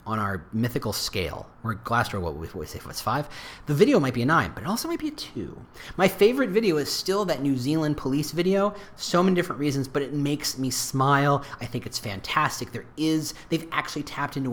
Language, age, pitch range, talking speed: English, 30-49, 125-175 Hz, 225 wpm